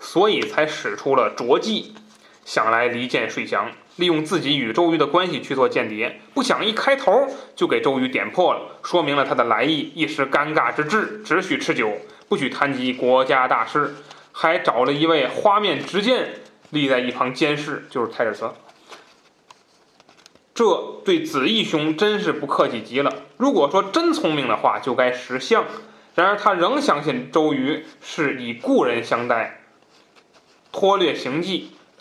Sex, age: male, 20-39